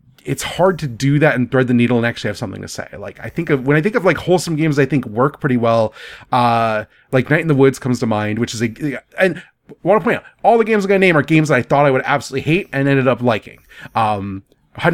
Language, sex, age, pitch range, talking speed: English, male, 30-49, 115-160 Hz, 275 wpm